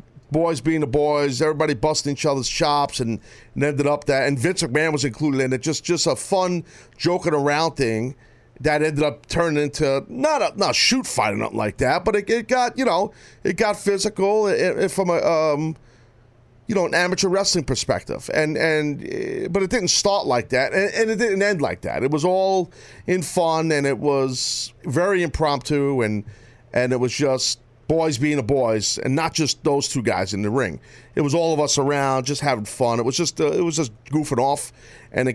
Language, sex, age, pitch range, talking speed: English, male, 40-59, 130-180 Hz, 215 wpm